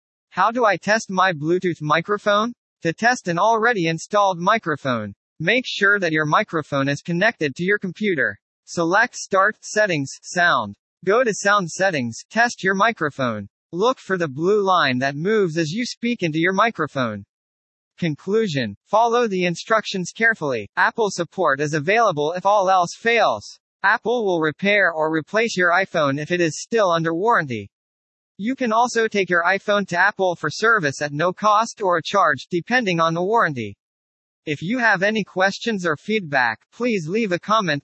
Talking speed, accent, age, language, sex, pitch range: 165 wpm, American, 40-59, English, male, 155-210 Hz